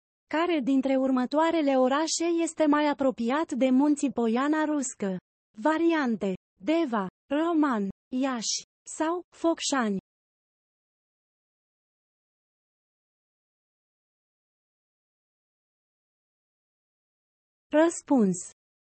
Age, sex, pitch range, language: 30-49, female, 225-310 Hz, Romanian